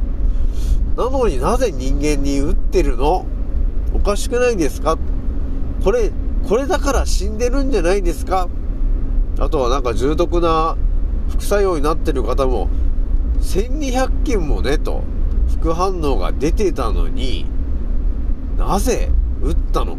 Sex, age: male, 40-59